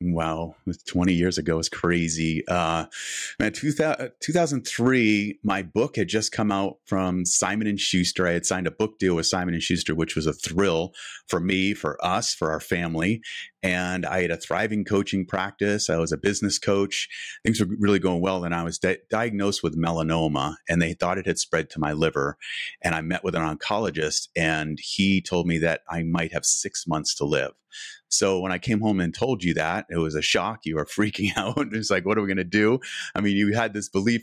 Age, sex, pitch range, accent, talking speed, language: 30-49, male, 80-100 Hz, American, 220 wpm, English